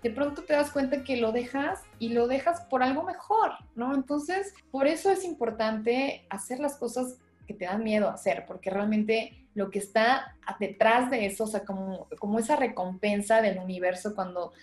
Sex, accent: female, Mexican